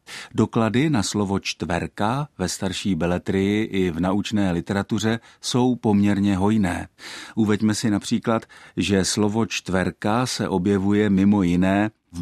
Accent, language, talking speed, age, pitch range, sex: native, Czech, 125 wpm, 50-69, 90-115 Hz, male